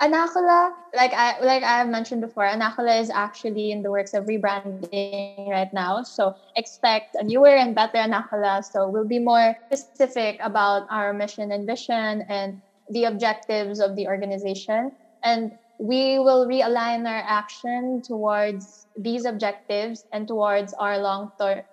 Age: 20-39